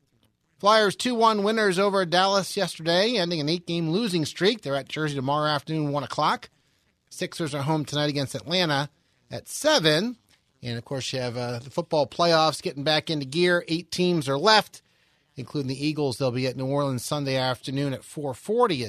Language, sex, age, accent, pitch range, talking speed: English, male, 30-49, American, 140-175 Hz, 175 wpm